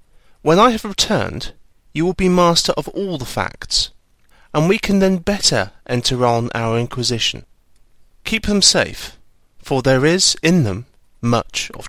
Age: 30-49